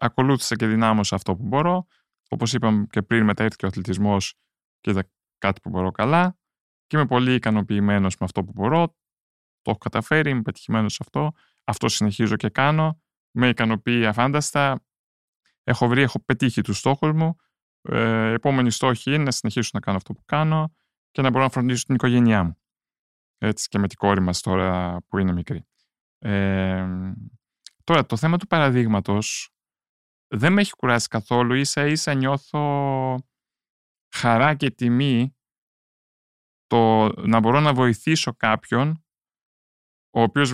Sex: male